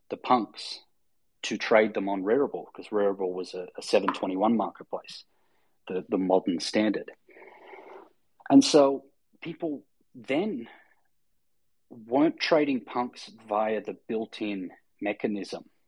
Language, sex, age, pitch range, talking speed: English, male, 30-49, 100-130 Hz, 110 wpm